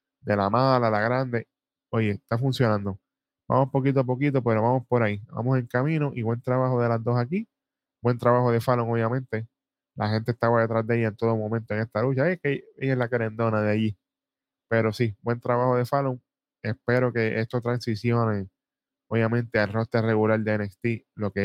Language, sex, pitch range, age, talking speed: Spanish, male, 110-130 Hz, 10-29, 195 wpm